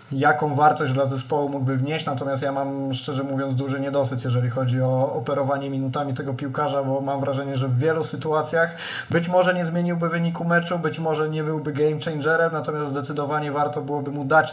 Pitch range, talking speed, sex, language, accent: 140-155 Hz, 185 wpm, male, Polish, native